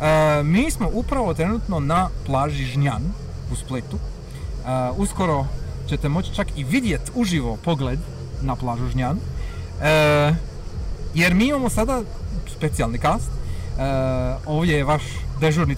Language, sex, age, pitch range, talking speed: Croatian, male, 30-49, 130-180 Hz, 130 wpm